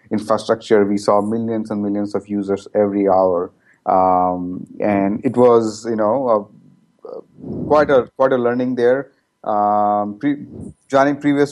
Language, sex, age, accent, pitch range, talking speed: English, male, 30-49, Indian, 105-120 Hz, 130 wpm